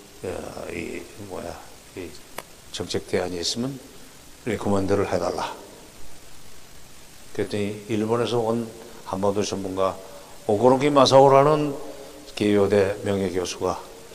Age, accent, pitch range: 60-79, native, 105-160 Hz